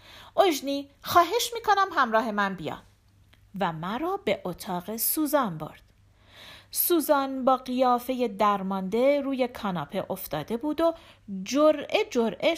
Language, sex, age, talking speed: Persian, female, 40-59, 115 wpm